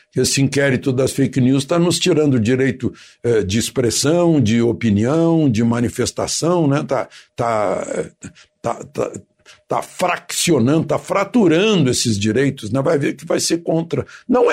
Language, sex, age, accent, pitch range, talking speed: Portuguese, male, 60-79, Brazilian, 135-190 Hz, 150 wpm